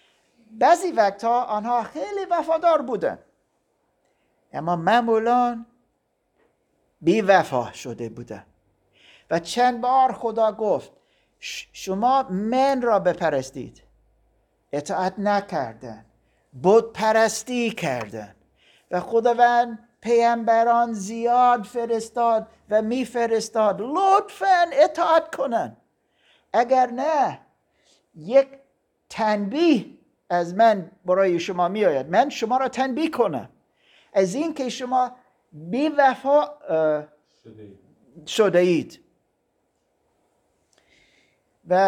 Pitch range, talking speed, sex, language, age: 175-250 Hz, 85 wpm, male, Persian, 60-79